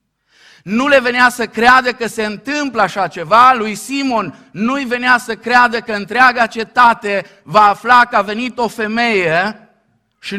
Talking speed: 155 wpm